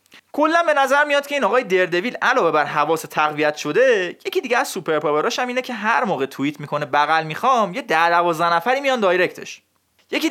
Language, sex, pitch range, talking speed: Persian, male, 155-250 Hz, 190 wpm